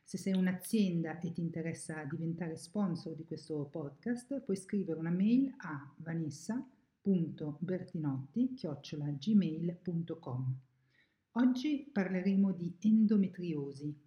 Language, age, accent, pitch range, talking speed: Italian, 50-69, native, 160-195 Hz, 90 wpm